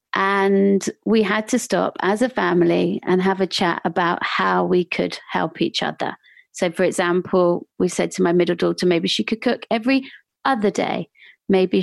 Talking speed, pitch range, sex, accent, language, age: 185 wpm, 180-215 Hz, female, British, English, 40-59